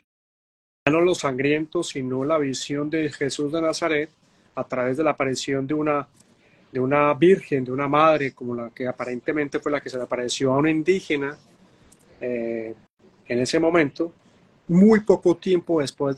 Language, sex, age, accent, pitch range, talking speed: Spanish, male, 30-49, Colombian, 130-160 Hz, 165 wpm